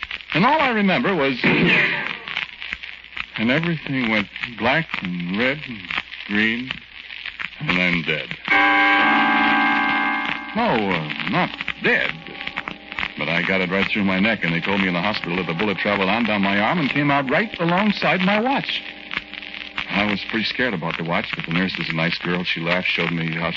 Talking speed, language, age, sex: 175 wpm, English, 60-79, male